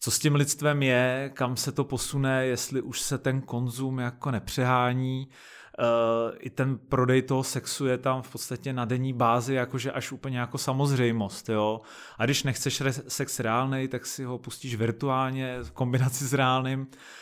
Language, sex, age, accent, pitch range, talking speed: Czech, male, 30-49, native, 125-135 Hz, 170 wpm